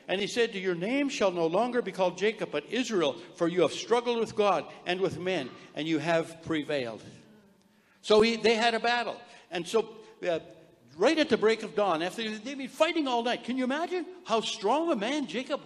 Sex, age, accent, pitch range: male, 60-79, American, 165-230 Hz